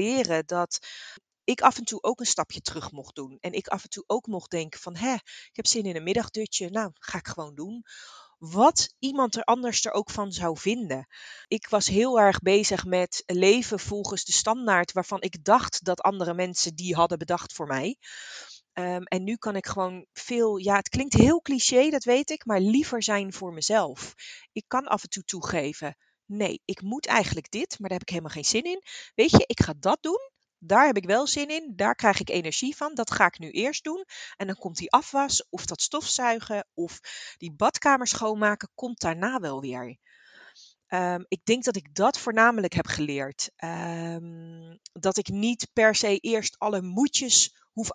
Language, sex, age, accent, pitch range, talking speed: Dutch, female, 30-49, Dutch, 180-235 Hz, 195 wpm